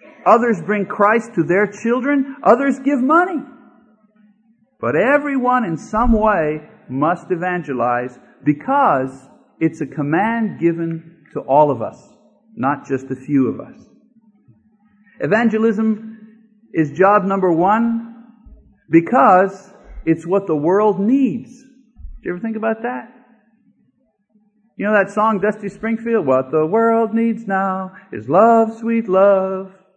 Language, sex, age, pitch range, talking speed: English, male, 50-69, 185-240 Hz, 125 wpm